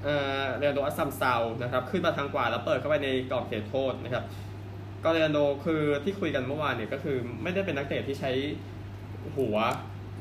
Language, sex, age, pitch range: Thai, male, 20-39, 100-145 Hz